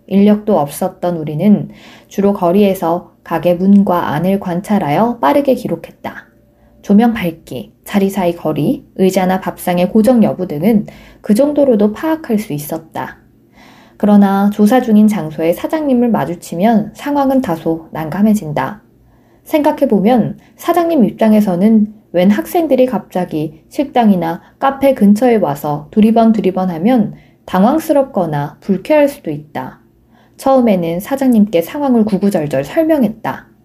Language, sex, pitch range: Korean, female, 175-245 Hz